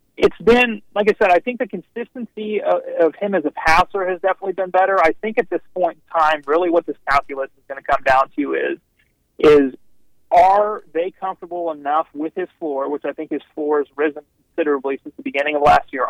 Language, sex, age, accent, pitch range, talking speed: English, male, 30-49, American, 140-195 Hz, 220 wpm